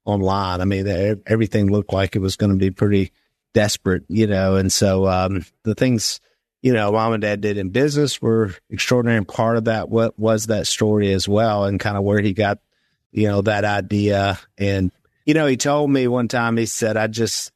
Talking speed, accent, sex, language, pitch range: 210 wpm, American, male, English, 100-115 Hz